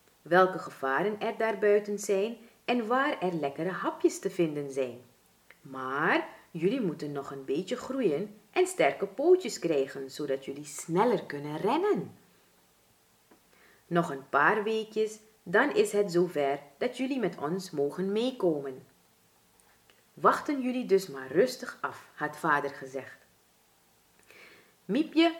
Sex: female